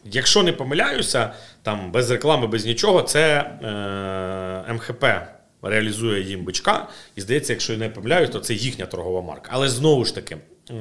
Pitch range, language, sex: 110-160 Hz, Ukrainian, male